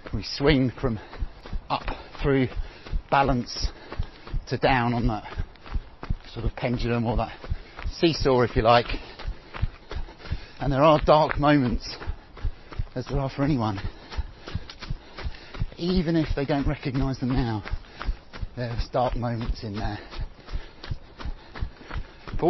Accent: British